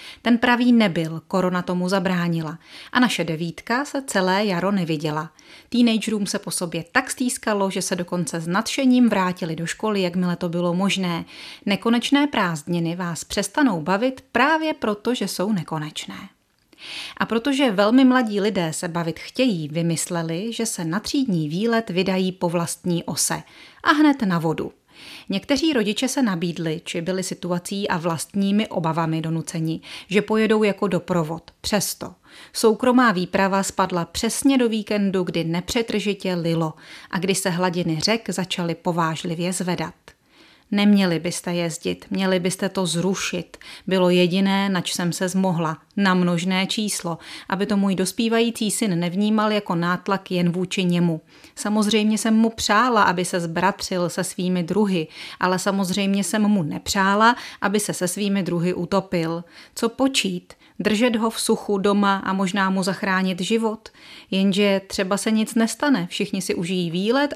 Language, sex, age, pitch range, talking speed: Czech, female, 30-49, 175-220 Hz, 145 wpm